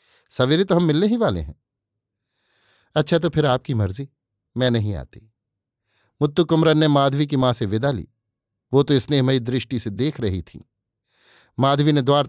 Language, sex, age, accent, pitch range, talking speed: Hindi, male, 50-69, native, 110-140 Hz, 175 wpm